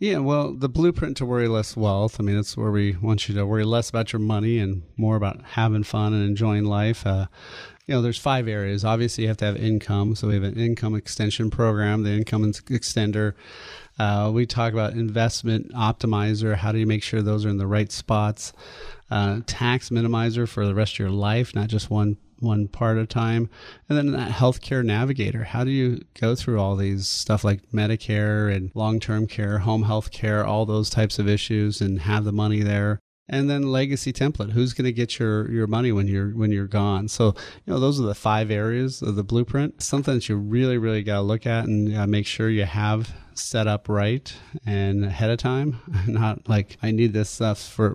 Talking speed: 215 wpm